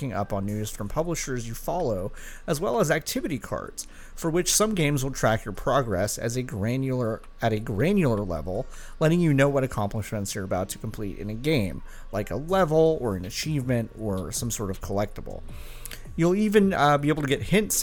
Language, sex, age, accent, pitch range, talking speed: English, male, 30-49, American, 105-155 Hz, 185 wpm